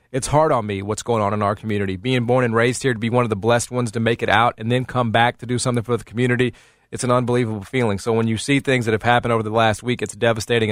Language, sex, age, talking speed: English, male, 30-49, 300 wpm